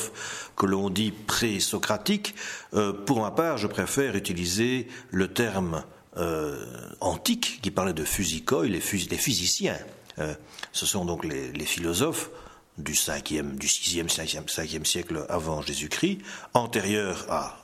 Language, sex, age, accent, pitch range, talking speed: French, male, 60-79, French, 85-115 Hz, 135 wpm